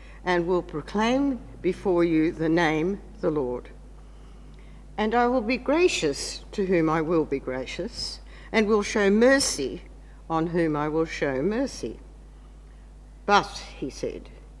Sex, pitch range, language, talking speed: female, 160-210 Hz, English, 135 wpm